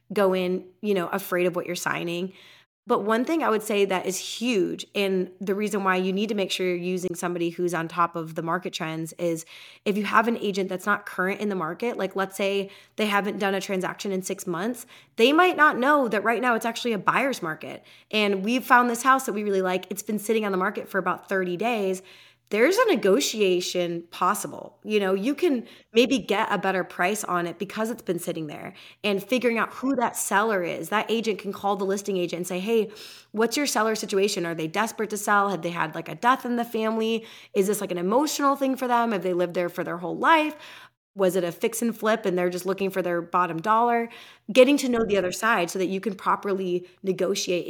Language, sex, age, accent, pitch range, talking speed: English, female, 20-39, American, 180-225 Hz, 235 wpm